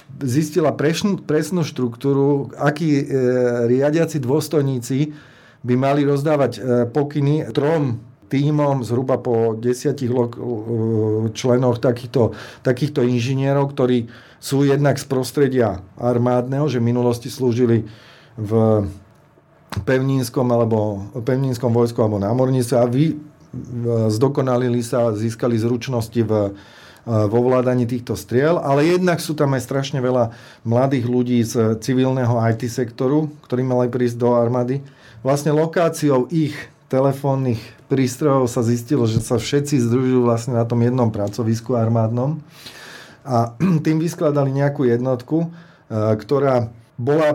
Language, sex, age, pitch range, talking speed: Slovak, male, 40-59, 120-140 Hz, 120 wpm